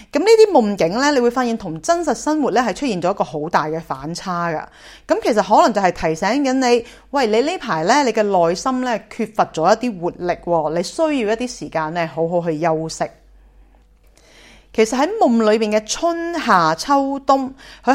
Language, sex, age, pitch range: Chinese, female, 30-49, 170-255 Hz